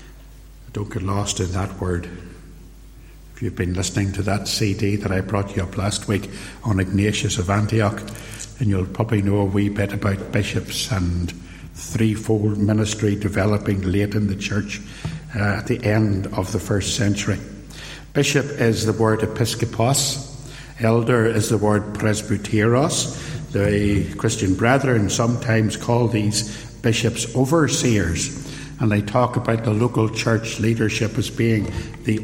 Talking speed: 145 wpm